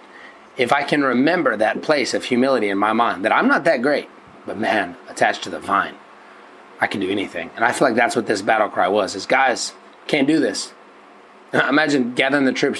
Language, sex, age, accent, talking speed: English, male, 30-49, American, 210 wpm